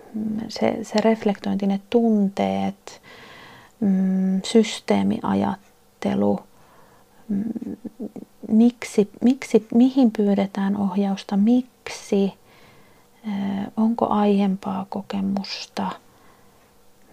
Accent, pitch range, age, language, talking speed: native, 200-235 Hz, 30-49, Finnish, 50 wpm